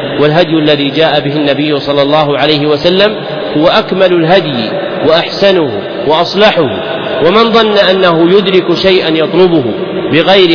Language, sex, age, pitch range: Arabic, male, 40-59, 155-190 Hz